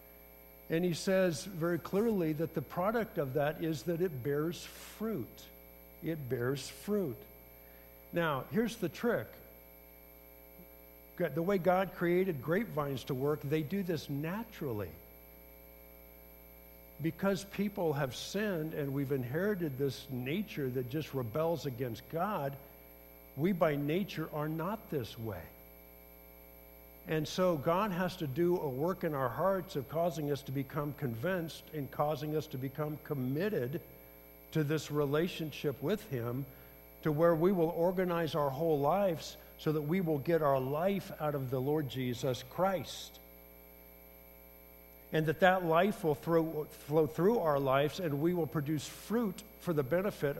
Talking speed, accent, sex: 145 wpm, American, male